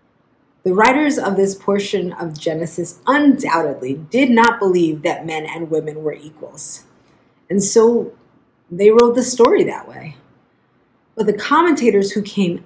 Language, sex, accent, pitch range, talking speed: English, female, American, 175-235 Hz, 140 wpm